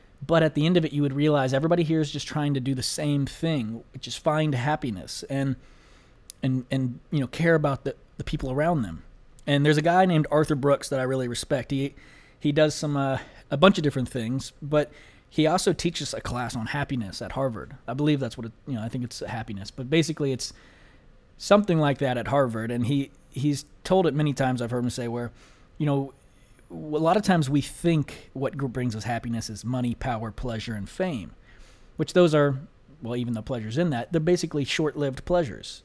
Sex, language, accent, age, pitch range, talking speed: male, English, American, 20-39, 120-150 Hz, 215 wpm